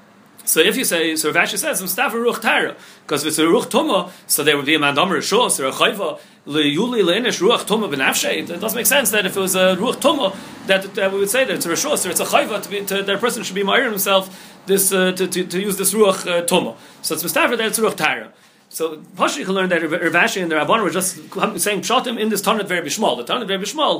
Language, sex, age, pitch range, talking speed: English, male, 30-49, 170-210 Hz, 230 wpm